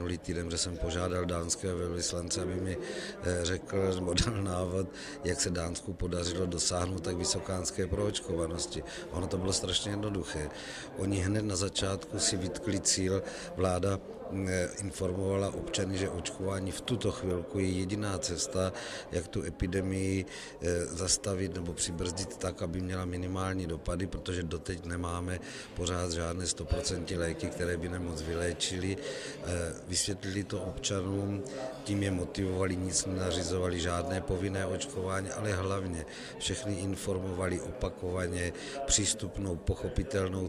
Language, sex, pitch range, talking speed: Czech, male, 90-100 Hz, 125 wpm